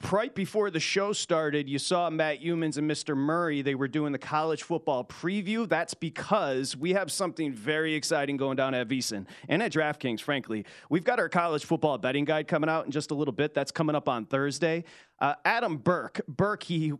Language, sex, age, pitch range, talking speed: English, male, 30-49, 145-170 Hz, 210 wpm